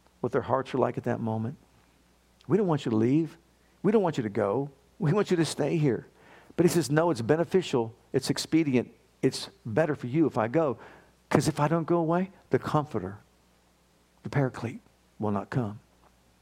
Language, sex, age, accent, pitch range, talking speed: English, male, 50-69, American, 110-145 Hz, 195 wpm